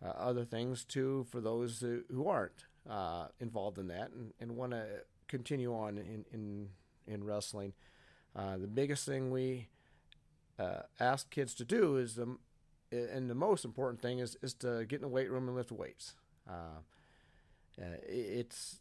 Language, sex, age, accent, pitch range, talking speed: English, male, 40-59, American, 105-130 Hz, 165 wpm